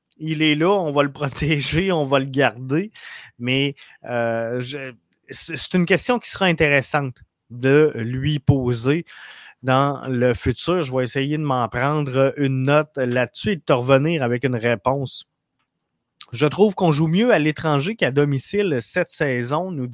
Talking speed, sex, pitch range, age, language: 160 wpm, male, 135-170 Hz, 20-39, French